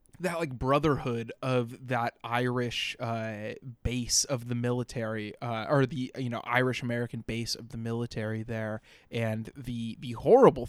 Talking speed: 150 wpm